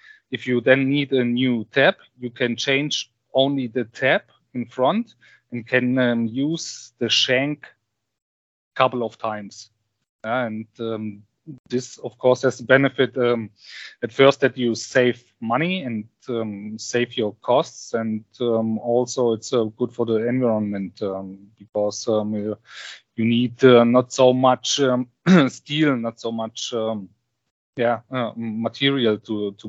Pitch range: 110-125 Hz